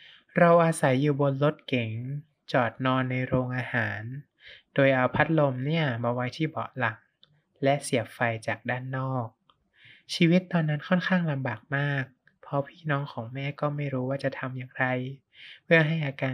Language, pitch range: Thai, 125-150 Hz